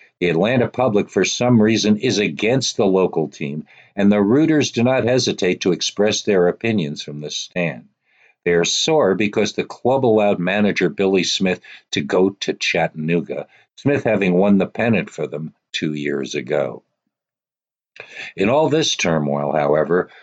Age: 60-79